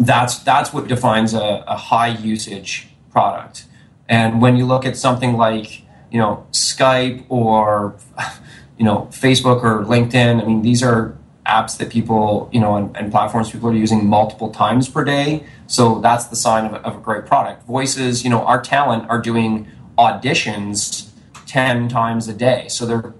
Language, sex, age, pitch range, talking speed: English, male, 30-49, 110-130 Hz, 175 wpm